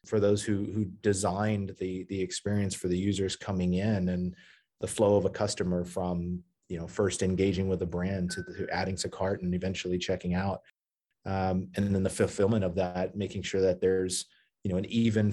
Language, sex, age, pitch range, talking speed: English, male, 30-49, 95-110 Hz, 200 wpm